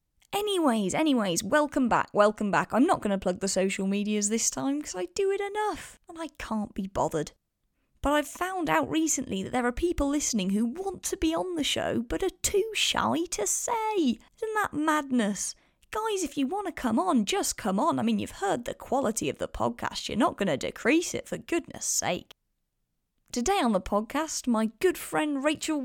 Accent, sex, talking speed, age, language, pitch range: British, female, 205 wpm, 20-39, English, 195-320 Hz